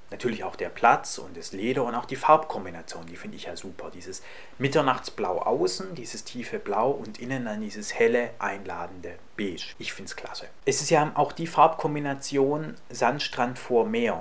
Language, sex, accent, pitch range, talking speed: German, male, German, 120-165 Hz, 175 wpm